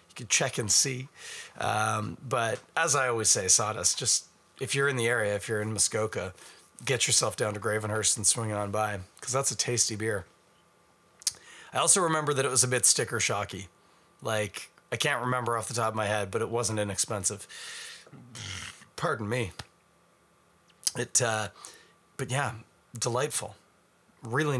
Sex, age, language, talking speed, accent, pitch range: male, 30-49, English, 165 wpm, American, 105-135 Hz